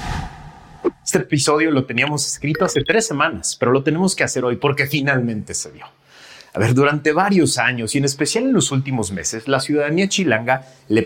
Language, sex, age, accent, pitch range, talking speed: Spanish, male, 40-59, Mexican, 120-180 Hz, 185 wpm